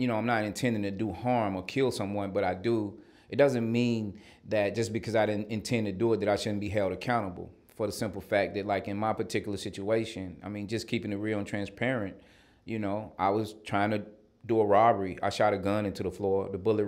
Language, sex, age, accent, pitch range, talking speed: English, male, 30-49, American, 95-110 Hz, 240 wpm